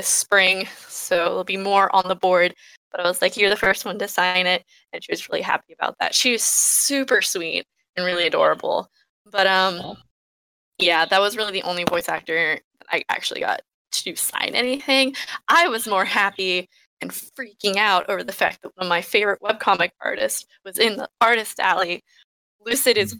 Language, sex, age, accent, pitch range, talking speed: English, female, 10-29, American, 190-250 Hz, 190 wpm